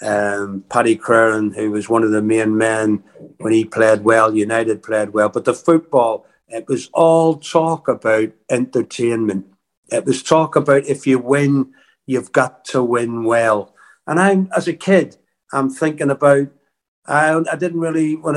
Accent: British